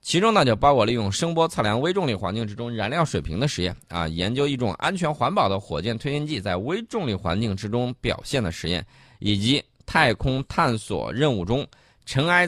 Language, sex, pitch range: Chinese, male, 100-145 Hz